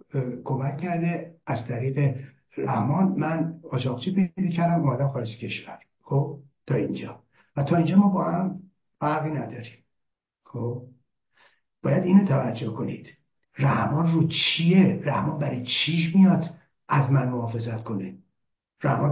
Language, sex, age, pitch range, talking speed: Persian, male, 60-79, 125-160 Hz, 120 wpm